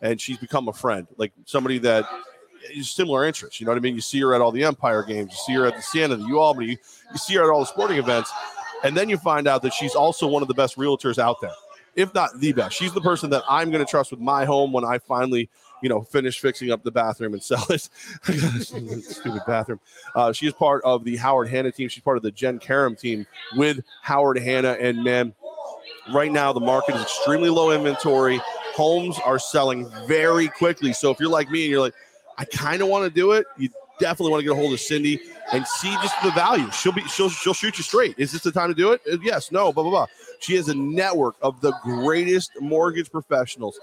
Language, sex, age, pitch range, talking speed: English, male, 30-49, 130-175 Hz, 240 wpm